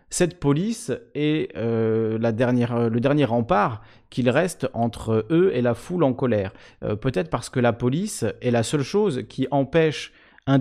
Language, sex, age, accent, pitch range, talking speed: French, male, 30-49, French, 115-145 Hz, 175 wpm